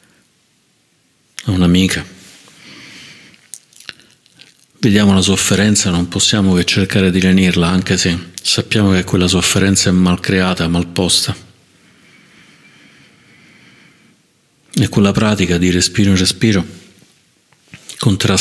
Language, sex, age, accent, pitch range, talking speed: Italian, male, 50-69, native, 90-100 Hz, 100 wpm